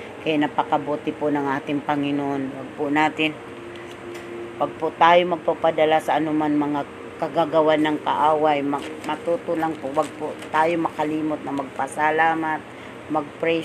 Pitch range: 145-160 Hz